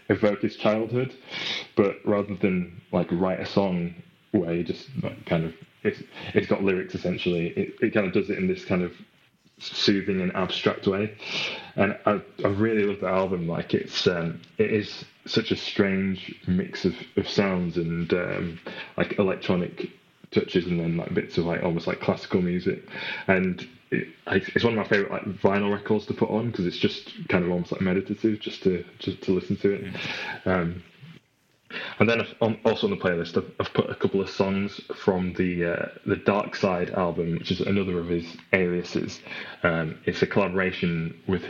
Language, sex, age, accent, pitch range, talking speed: English, male, 20-39, British, 85-100 Hz, 180 wpm